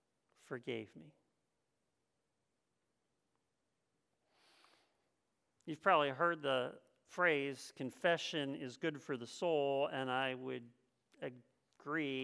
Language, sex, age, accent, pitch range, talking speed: English, male, 50-69, American, 140-185 Hz, 85 wpm